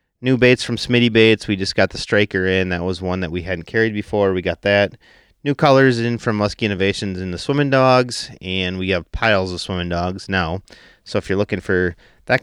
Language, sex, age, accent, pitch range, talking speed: English, male, 30-49, American, 90-115 Hz, 220 wpm